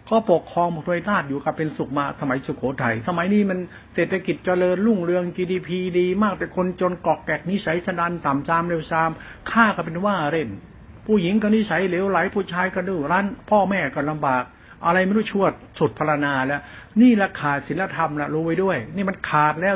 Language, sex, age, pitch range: Thai, male, 60-79, 145-185 Hz